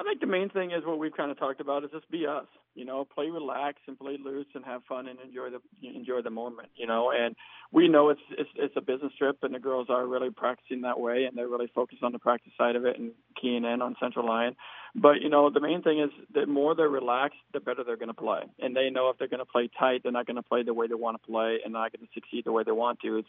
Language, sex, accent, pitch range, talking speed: English, male, American, 120-135 Hz, 295 wpm